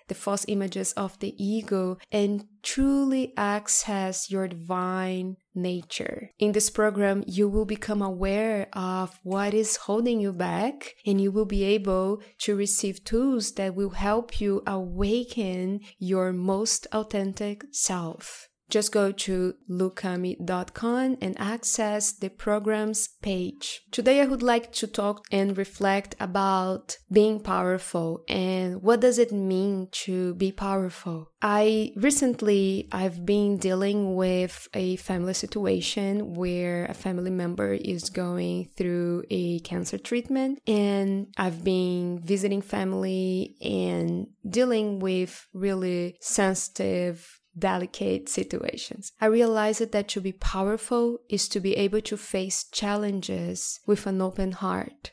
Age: 20-39